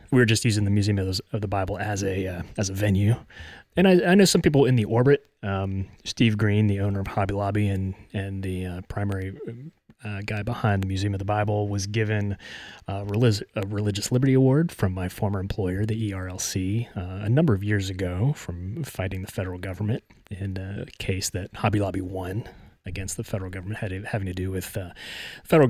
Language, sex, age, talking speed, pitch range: English, male, 30-49, 205 wpm, 95-110 Hz